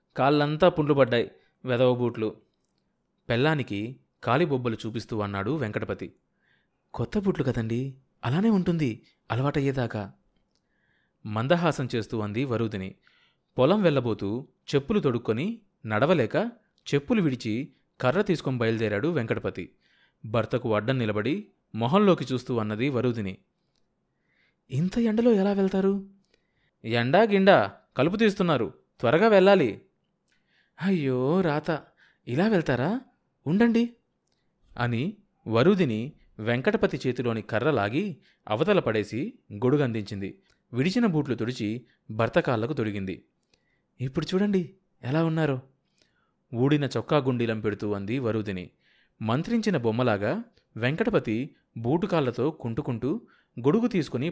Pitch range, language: 115-175 Hz, Telugu